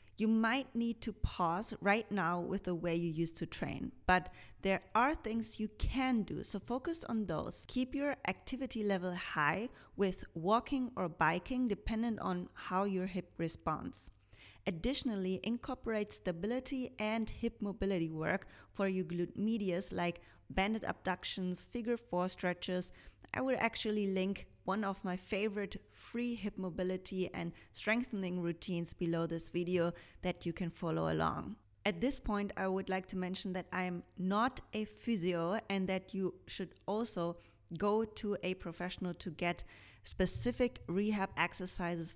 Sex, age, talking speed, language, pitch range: female, 30-49, 150 wpm, English, 180-220 Hz